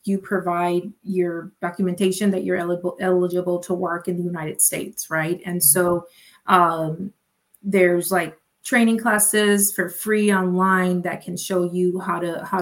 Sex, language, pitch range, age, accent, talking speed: female, English, 175-195 Hz, 30-49, American, 145 wpm